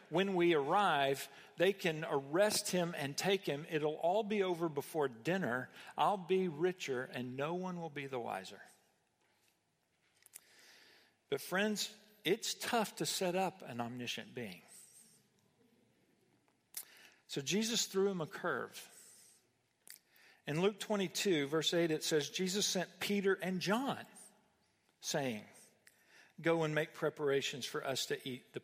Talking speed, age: 135 wpm, 50-69